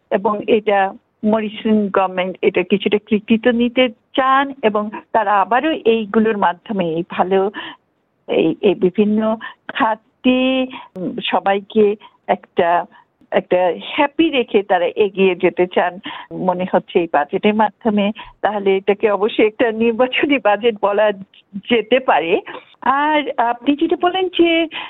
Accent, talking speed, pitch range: native, 70 wpm, 205-265 Hz